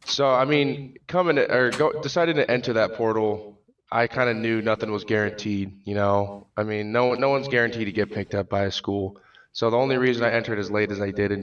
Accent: American